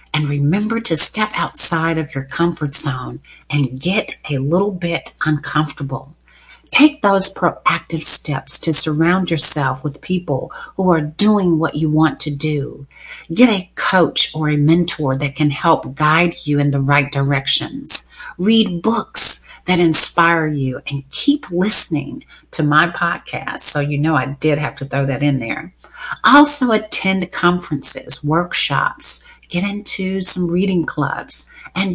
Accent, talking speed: American, 150 wpm